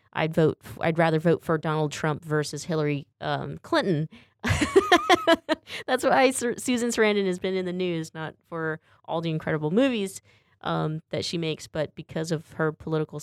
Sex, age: female, 20-39